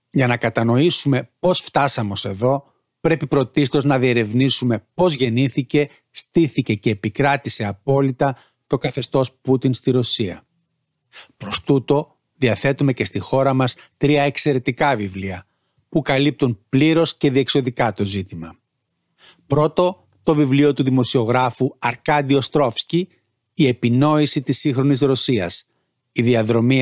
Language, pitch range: Greek, 115-145 Hz